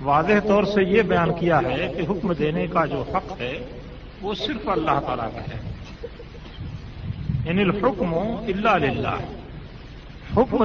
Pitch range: 165-210 Hz